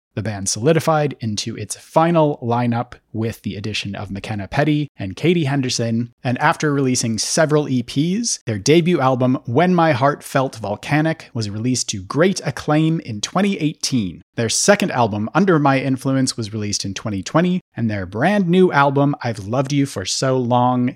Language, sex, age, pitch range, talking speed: English, male, 30-49, 115-150 Hz, 165 wpm